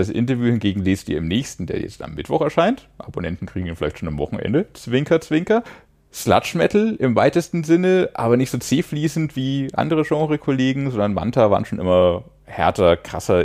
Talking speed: 175 wpm